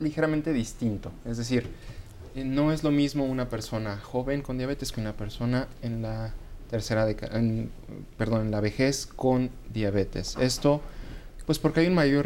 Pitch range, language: 105-130 Hz, Spanish